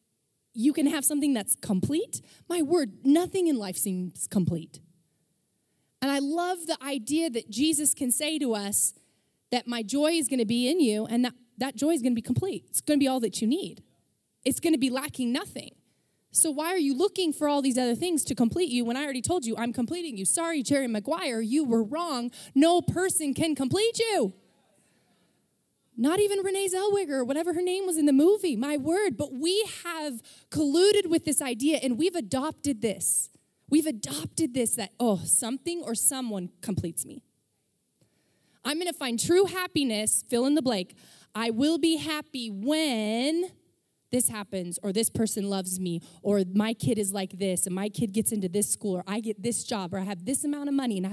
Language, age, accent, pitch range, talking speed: English, 20-39, American, 220-315 Hz, 200 wpm